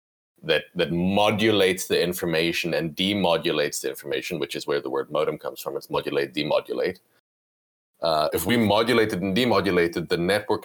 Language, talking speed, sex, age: English, 160 wpm, male, 30-49